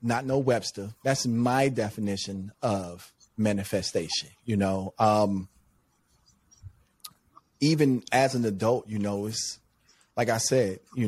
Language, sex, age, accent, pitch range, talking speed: English, male, 30-49, American, 110-140 Hz, 120 wpm